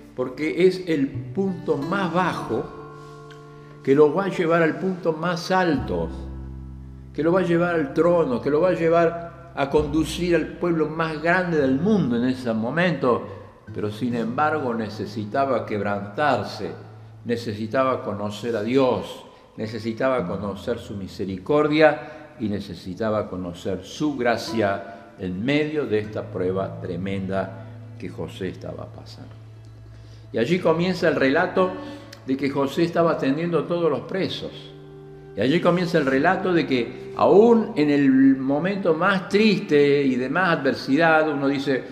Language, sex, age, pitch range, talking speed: Spanish, male, 60-79, 110-170 Hz, 140 wpm